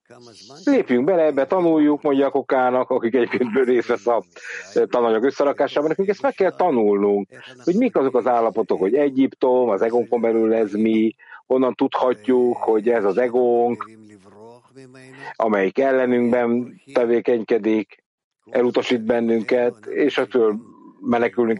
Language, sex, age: English, male, 60-79